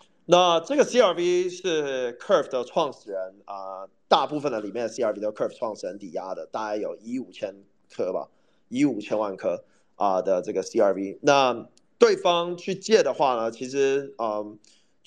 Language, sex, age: Chinese, male, 30-49